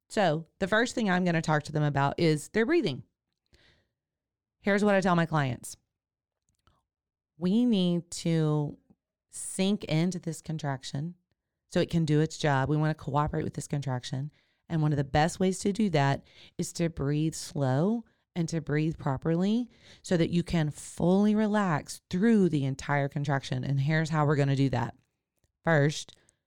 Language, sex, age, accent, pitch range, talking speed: English, female, 30-49, American, 140-185 Hz, 170 wpm